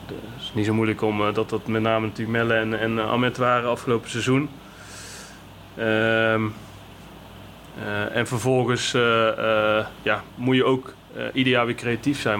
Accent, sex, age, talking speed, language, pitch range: Dutch, male, 20-39, 160 wpm, Dutch, 105-120 Hz